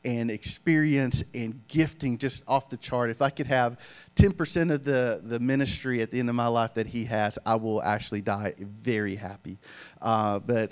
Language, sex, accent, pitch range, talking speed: English, male, American, 115-135 Hz, 190 wpm